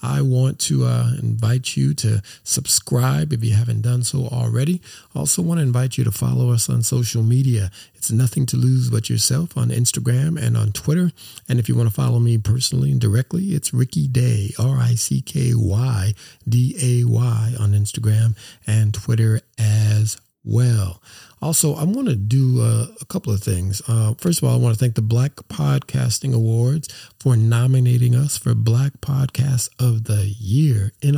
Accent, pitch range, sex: American, 115-135 Hz, male